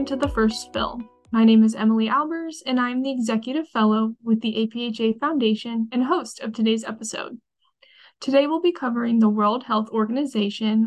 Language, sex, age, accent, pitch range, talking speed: English, female, 10-29, American, 215-260 Hz, 170 wpm